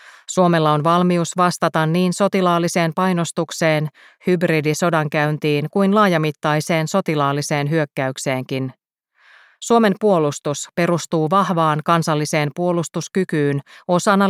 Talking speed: 80 wpm